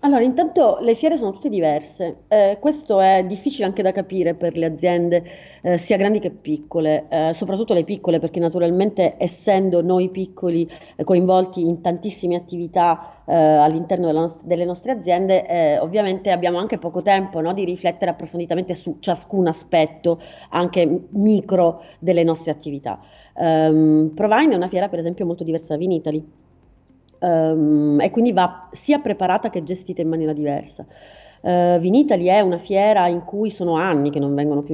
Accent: native